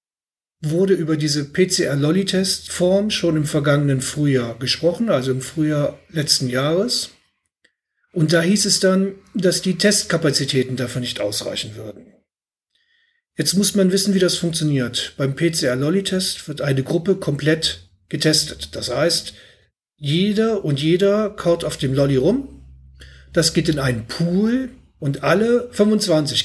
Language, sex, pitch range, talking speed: German, male, 140-190 Hz, 135 wpm